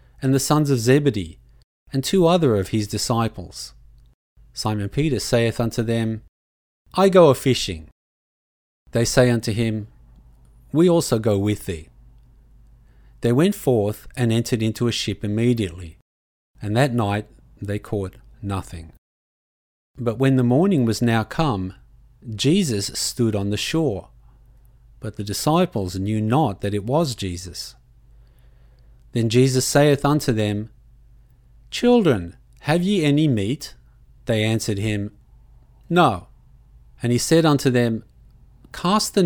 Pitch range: 95-130 Hz